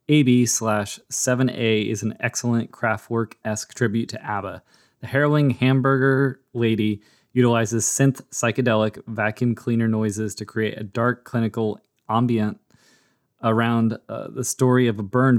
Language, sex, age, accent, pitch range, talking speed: English, male, 20-39, American, 110-125 Hz, 130 wpm